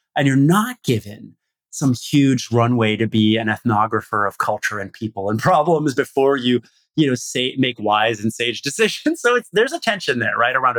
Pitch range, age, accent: 110-150 Hz, 30-49, American